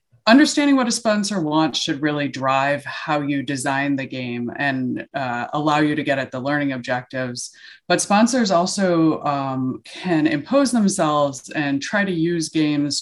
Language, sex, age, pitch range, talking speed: English, female, 30-49, 135-175 Hz, 160 wpm